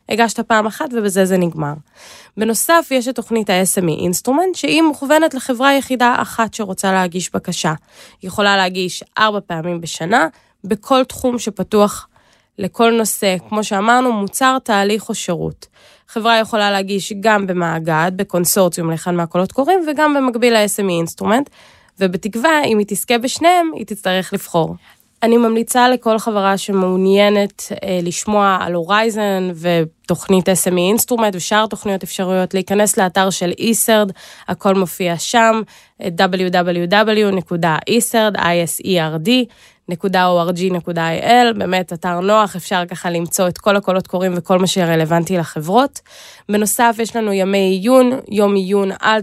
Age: 20-39